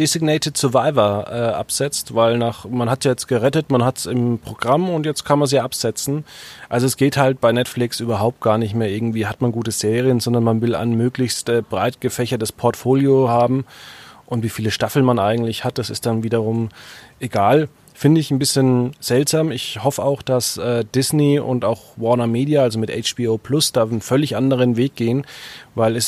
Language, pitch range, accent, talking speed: German, 120-140 Hz, German, 200 wpm